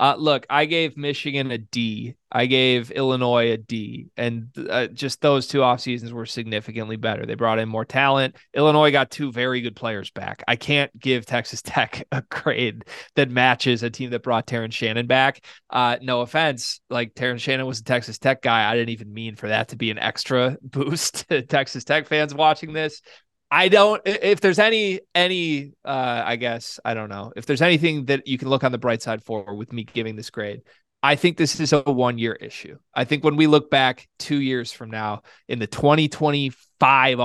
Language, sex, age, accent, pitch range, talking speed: English, male, 20-39, American, 120-150 Hz, 205 wpm